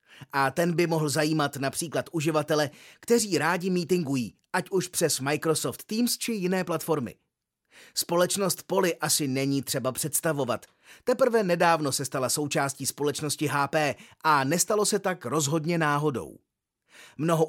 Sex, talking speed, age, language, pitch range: male, 130 wpm, 30-49, Czech, 145-180 Hz